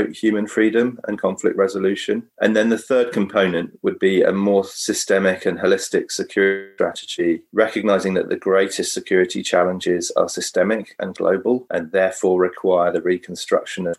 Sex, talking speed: male, 150 wpm